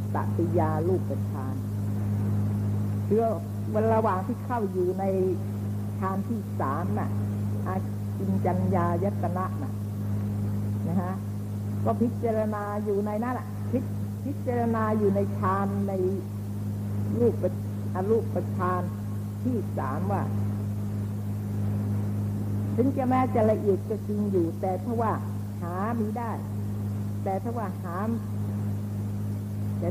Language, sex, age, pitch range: Thai, female, 60-79, 100-105 Hz